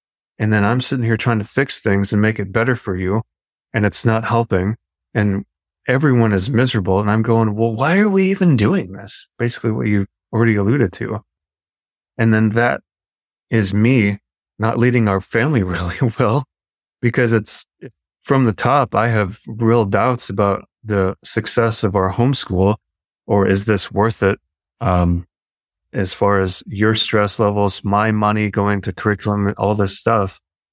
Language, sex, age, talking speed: English, male, 30-49, 165 wpm